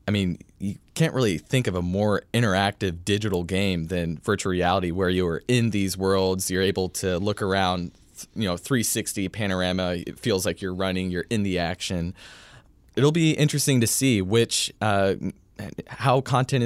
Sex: male